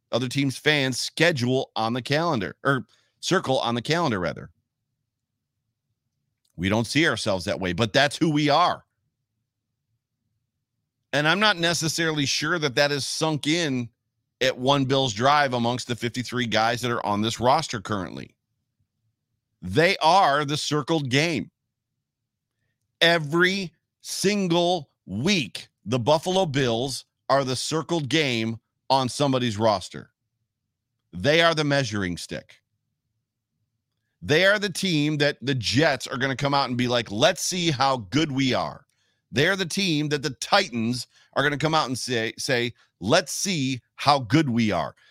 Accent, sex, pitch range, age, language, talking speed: American, male, 115-150 Hz, 40-59, English, 150 wpm